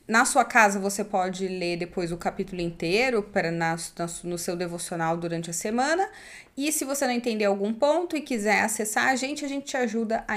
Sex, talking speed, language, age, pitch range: female, 190 wpm, Portuguese, 20-39, 200-255 Hz